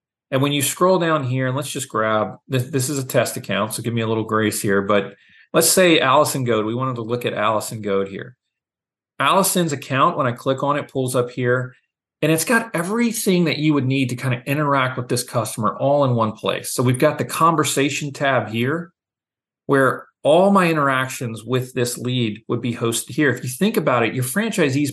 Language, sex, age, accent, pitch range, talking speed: English, male, 40-59, American, 115-145 Hz, 215 wpm